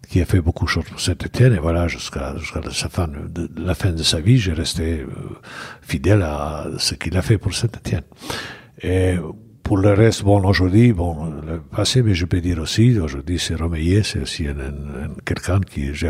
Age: 60-79